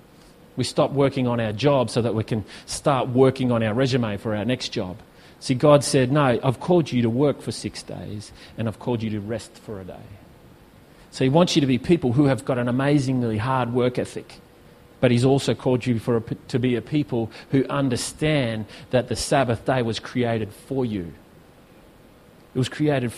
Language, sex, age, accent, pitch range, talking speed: English, male, 30-49, Australian, 120-145 Hz, 200 wpm